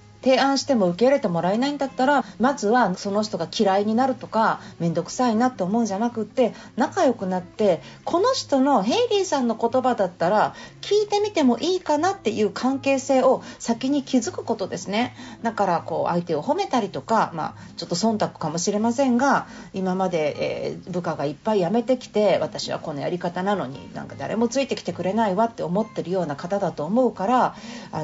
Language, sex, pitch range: Japanese, female, 185-275 Hz